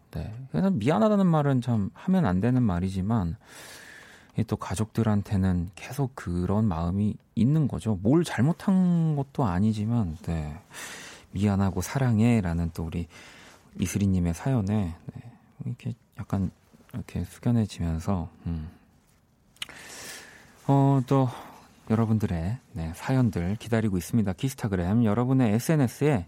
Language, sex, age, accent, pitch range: Korean, male, 40-59, native, 95-130 Hz